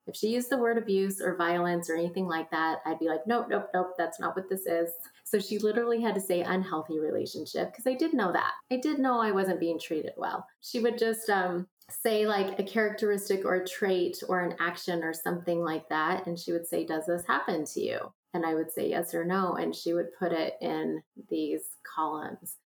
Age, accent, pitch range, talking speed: 30-49, American, 165-205 Hz, 230 wpm